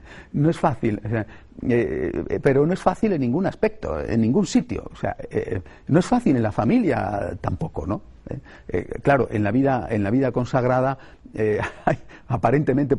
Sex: male